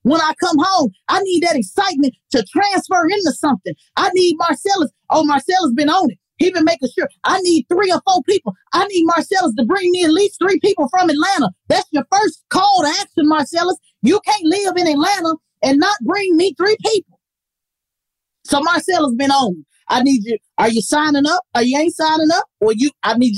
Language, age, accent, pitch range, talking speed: English, 30-49, American, 235-345 Hz, 210 wpm